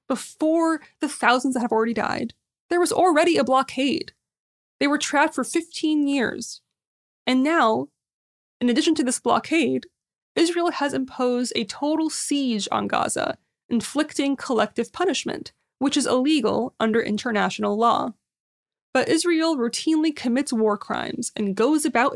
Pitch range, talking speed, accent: 230-300 Hz, 140 wpm, American